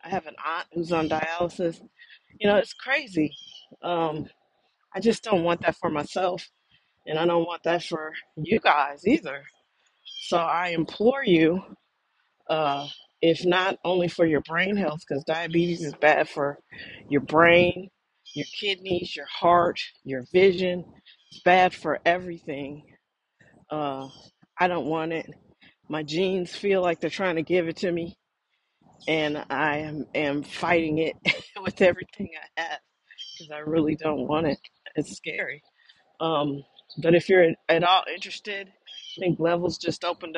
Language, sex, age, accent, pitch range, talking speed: English, female, 40-59, American, 155-185 Hz, 155 wpm